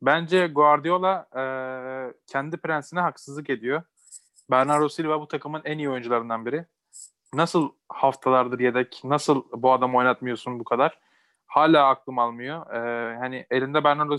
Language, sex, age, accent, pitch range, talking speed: Turkish, male, 20-39, native, 130-160 Hz, 130 wpm